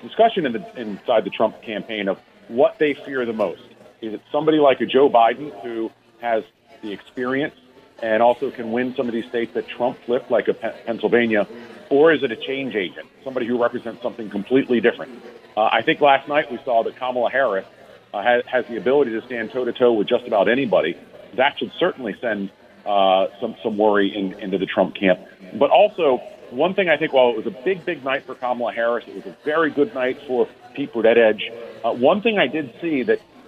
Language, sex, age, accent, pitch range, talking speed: English, male, 40-59, American, 110-140 Hz, 205 wpm